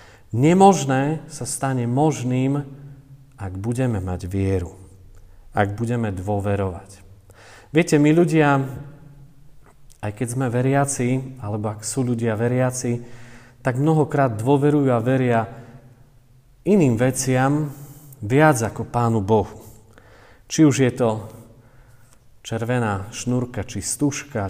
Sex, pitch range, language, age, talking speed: male, 105-135 Hz, Slovak, 40-59, 105 wpm